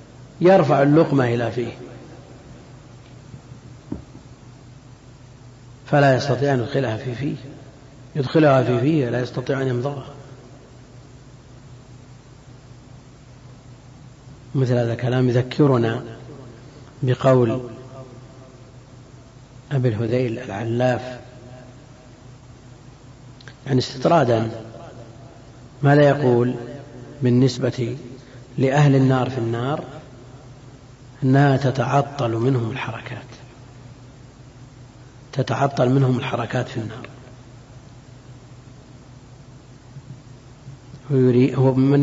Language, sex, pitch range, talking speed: Arabic, male, 125-135 Hz, 65 wpm